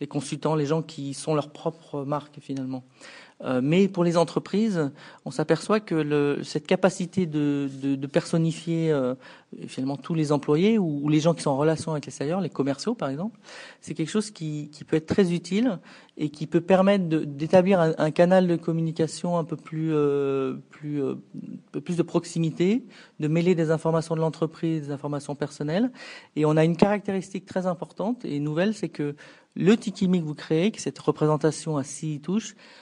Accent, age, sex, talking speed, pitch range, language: French, 40-59, male, 195 wpm, 150-185 Hz, French